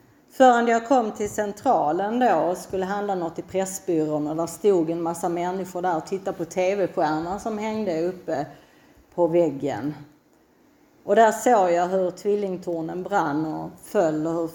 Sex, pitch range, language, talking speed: female, 175-235 Hz, Swedish, 160 wpm